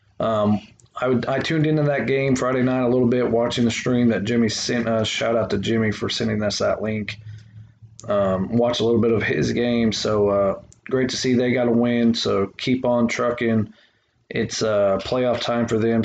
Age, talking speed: 20-39, 215 wpm